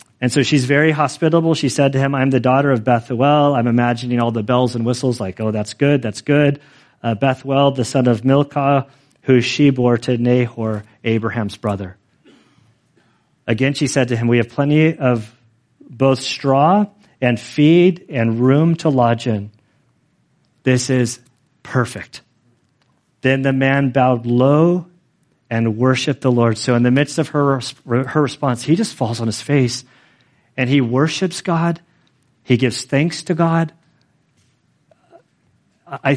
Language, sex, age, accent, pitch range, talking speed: English, male, 40-59, American, 125-150 Hz, 155 wpm